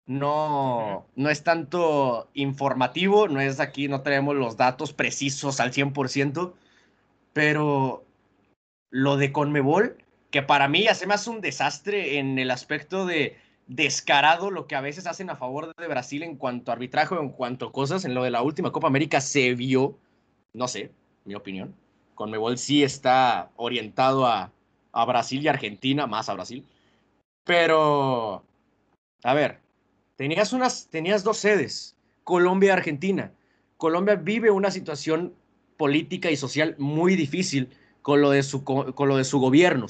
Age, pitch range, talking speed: 20-39, 135-170 Hz, 145 wpm